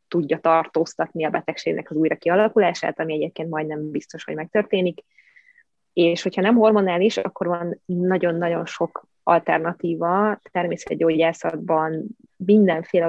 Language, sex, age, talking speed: Hungarian, female, 20-39, 110 wpm